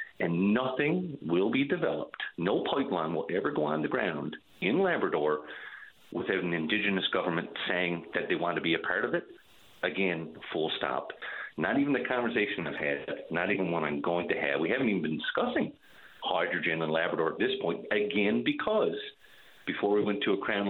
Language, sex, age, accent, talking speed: English, male, 40-59, American, 185 wpm